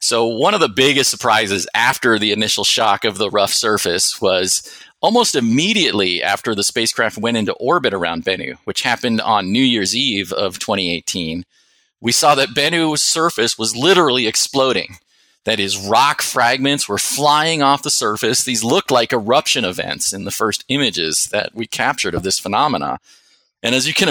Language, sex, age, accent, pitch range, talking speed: English, male, 40-59, American, 100-130 Hz, 170 wpm